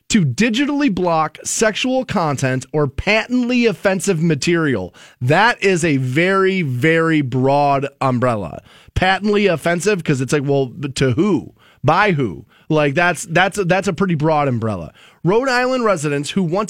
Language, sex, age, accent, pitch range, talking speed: English, male, 30-49, American, 150-215 Hz, 140 wpm